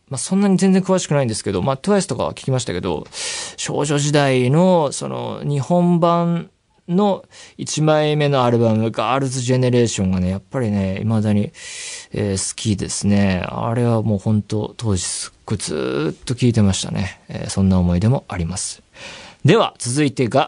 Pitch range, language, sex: 105-155 Hz, Japanese, male